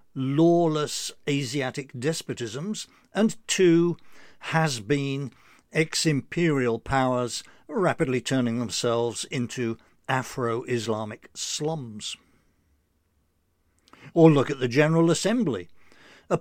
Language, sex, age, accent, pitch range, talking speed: English, male, 60-79, British, 120-165 Hz, 75 wpm